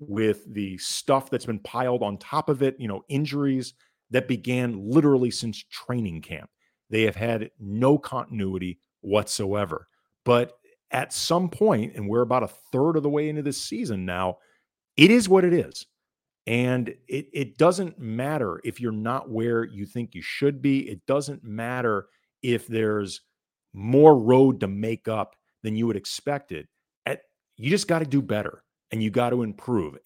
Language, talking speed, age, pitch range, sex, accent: English, 170 wpm, 40-59, 105-140 Hz, male, American